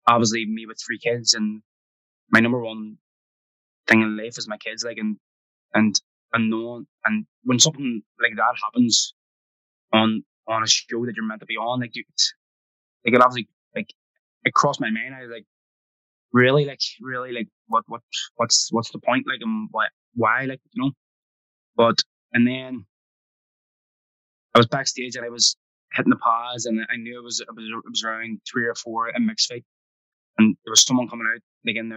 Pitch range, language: 110-125 Hz, English